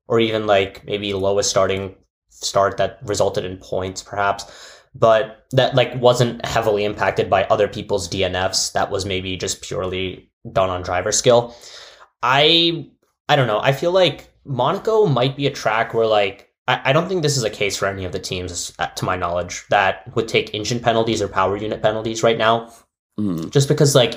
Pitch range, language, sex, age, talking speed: 95-125 Hz, English, male, 10-29, 185 wpm